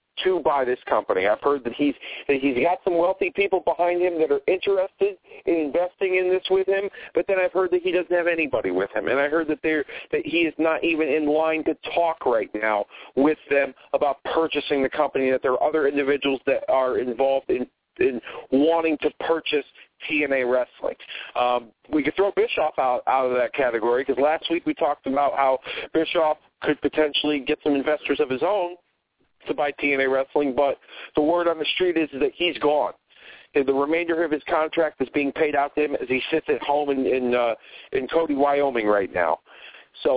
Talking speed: 200 wpm